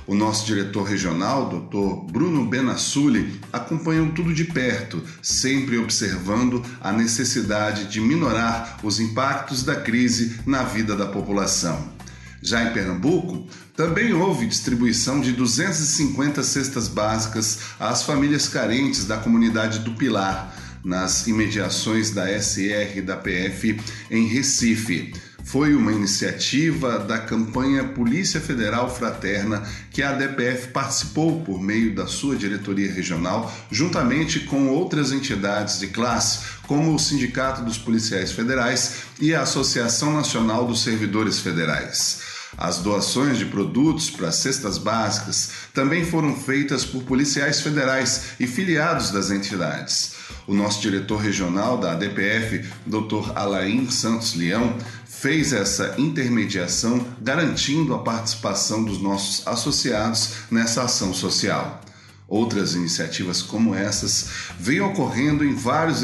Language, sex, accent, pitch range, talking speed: Portuguese, male, Brazilian, 100-130 Hz, 125 wpm